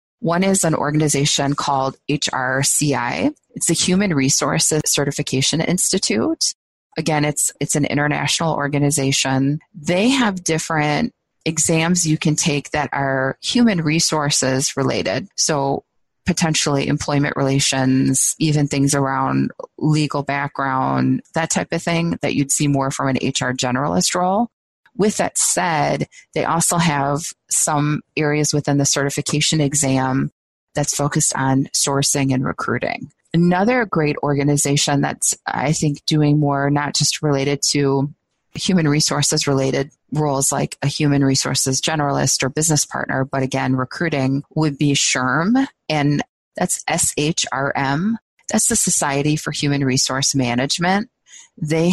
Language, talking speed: English, 125 wpm